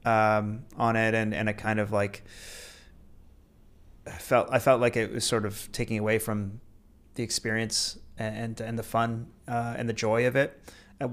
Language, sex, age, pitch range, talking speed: English, male, 30-49, 105-115 Hz, 180 wpm